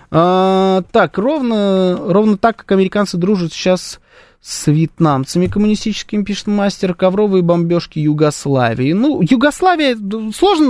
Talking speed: 110 wpm